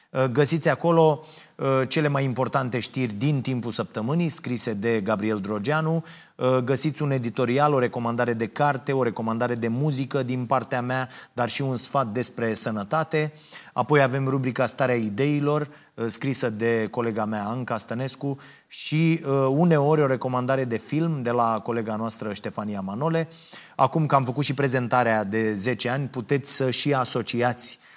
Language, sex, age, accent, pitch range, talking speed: Romanian, male, 30-49, native, 120-150 Hz, 150 wpm